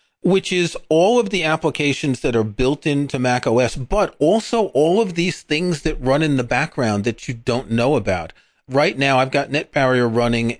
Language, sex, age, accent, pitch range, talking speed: English, male, 40-59, American, 115-155 Hz, 195 wpm